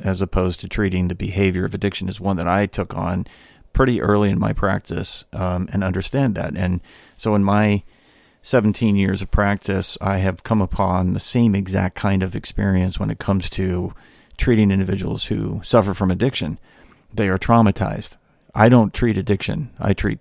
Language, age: English, 50-69